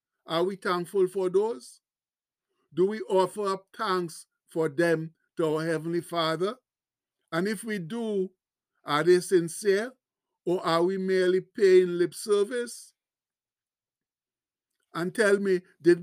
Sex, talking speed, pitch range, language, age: male, 125 wpm, 170-195 Hz, English, 50-69